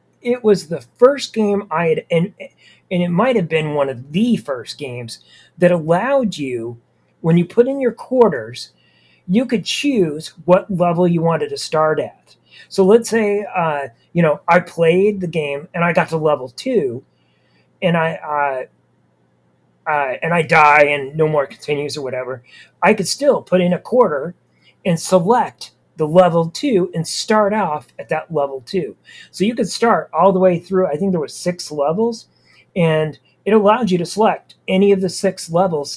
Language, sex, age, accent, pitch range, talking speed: English, male, 40-59, American, 150-200 Hz, 185 wpm